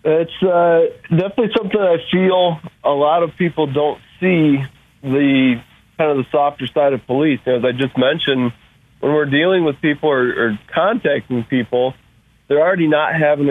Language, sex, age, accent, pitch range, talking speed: English, male, 40-59, American, 130-155 Hz, 165 wpm